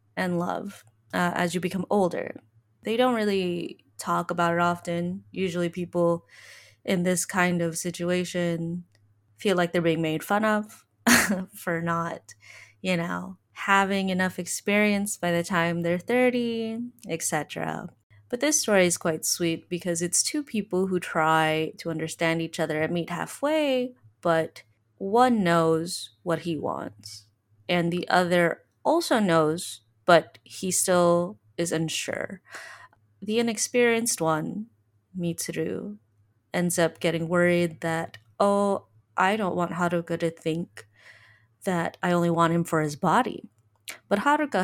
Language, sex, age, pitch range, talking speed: English, female, 20-39, 160-190 Hz, 135 wpm